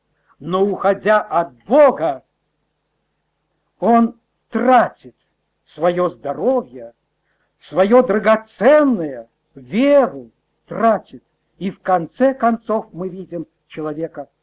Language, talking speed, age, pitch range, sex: Russian, 80 wpm, 60-79, 165-245 Hz, male